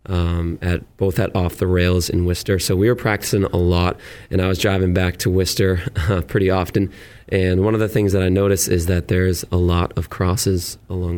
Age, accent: 20-39, American